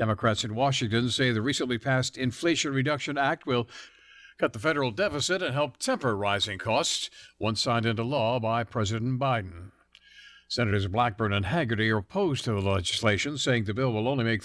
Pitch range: 120-180 Hz